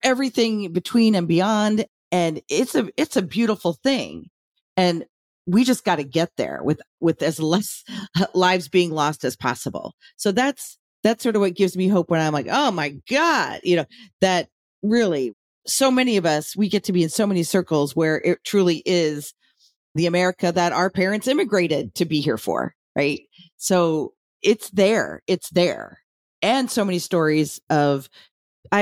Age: 40-59